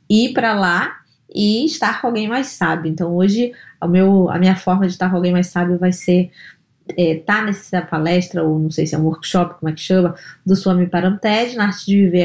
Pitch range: 175-195 Hz